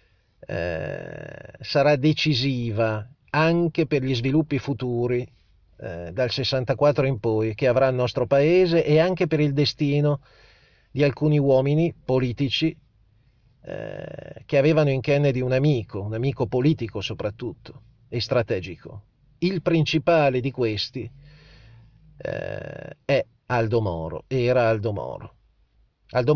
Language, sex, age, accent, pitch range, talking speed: Italian, male, 40-59, native, 115-145 Hz, 120 wpm